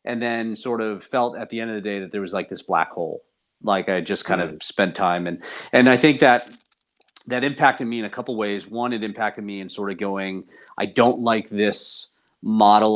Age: 40-59